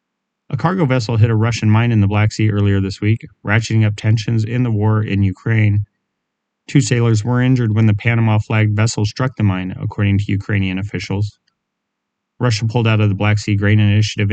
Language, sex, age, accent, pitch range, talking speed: English, male, 30-49, American, 100-120 Hz, 195 wpm